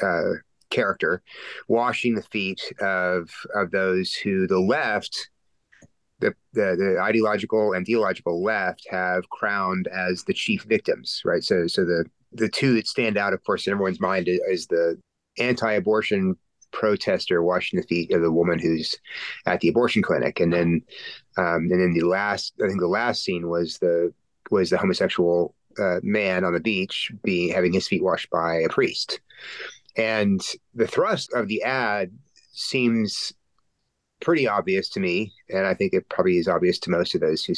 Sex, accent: male, American